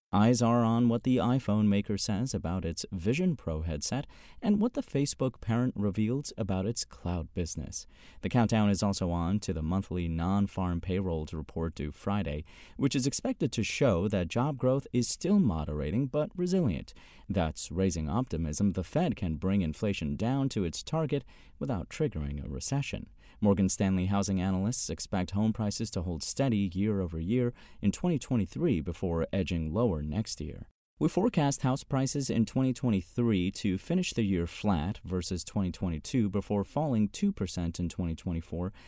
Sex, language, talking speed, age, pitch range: male, English, 155 wpm, 30-49, 90-125 Hz